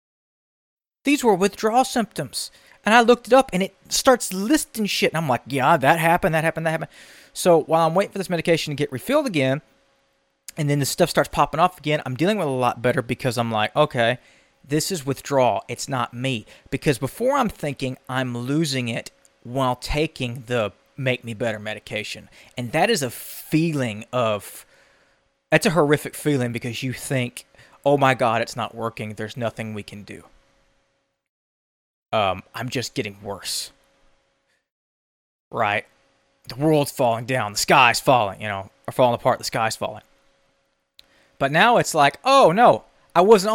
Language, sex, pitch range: English, male, 120-165 Hz